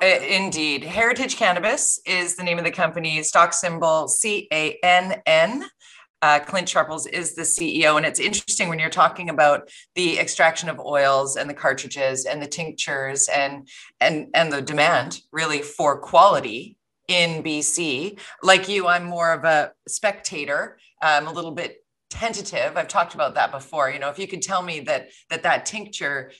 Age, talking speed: 30-49, 160 wpm